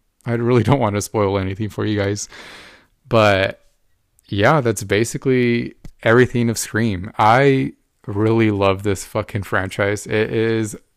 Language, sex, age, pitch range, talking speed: English, male, 20-39, 100-115 Hz, 135 wpm